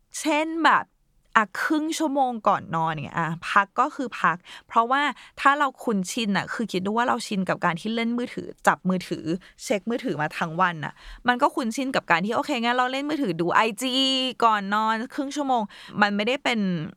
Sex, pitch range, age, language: female, 175-235 Hz, 20-39, Thai